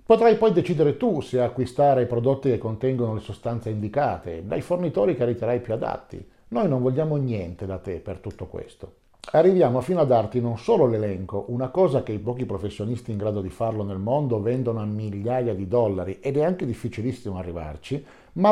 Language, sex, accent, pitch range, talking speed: Italian, male, native, 105-145 Hz, 190 wpm